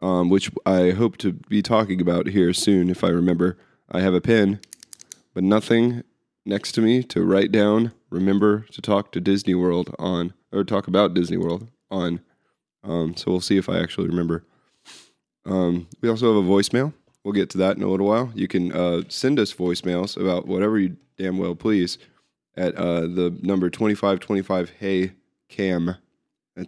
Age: 20-39